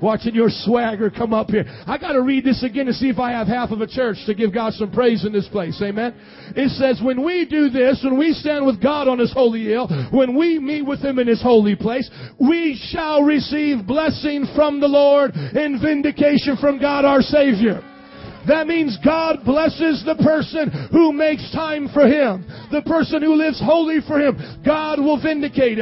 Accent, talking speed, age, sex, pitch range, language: American, 205 wpm, 40-59, male, 260-305 Hz, English